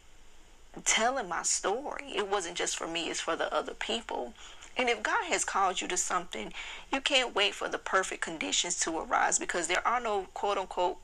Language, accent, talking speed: English, American, 195 wpm